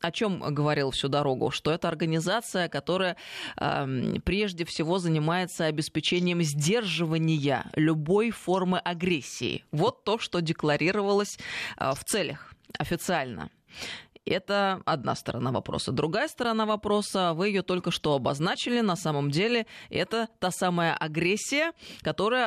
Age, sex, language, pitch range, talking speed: 20-39, female, Russian, 160-200 Hz, 125 wpm